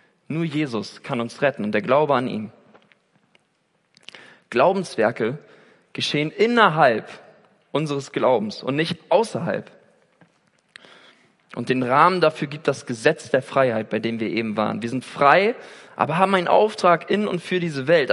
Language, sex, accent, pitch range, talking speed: German, male, German, 125-175 Hz, 145 wpm